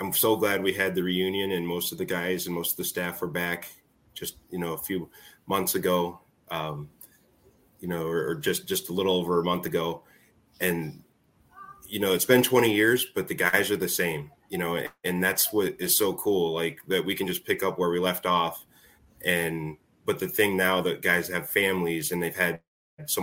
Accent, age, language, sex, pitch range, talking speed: American, 20-39, English, male, 85-95 Hz, 215 wpm